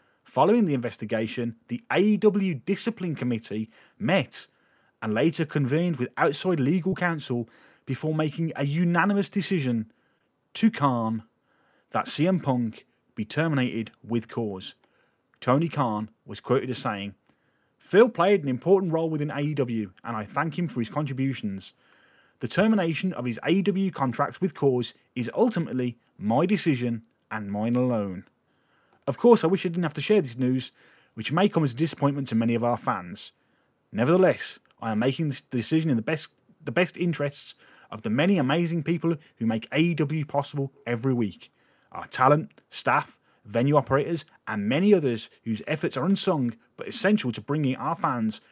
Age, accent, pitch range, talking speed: 30-49, British, 120-170 Hz, 155 wpm